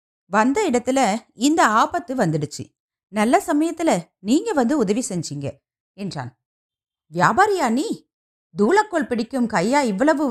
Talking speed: 105 wpm